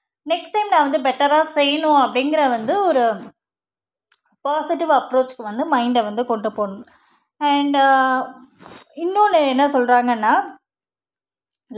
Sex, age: female, 20-39